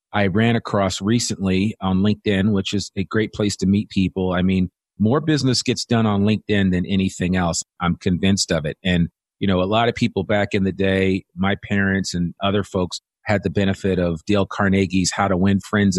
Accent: American